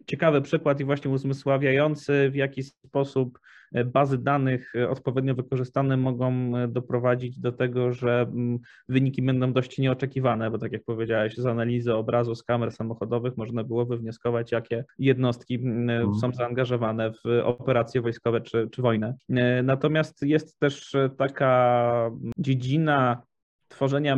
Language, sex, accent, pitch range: English, male, Polish, 120-135 Hz